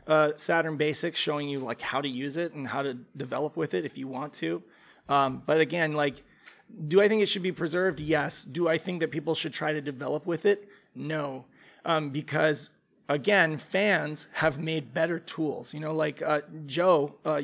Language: English